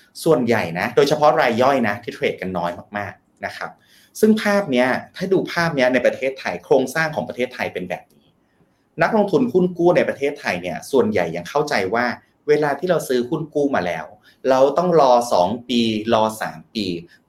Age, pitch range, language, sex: 30-49, 105-165 Hz, Thai, male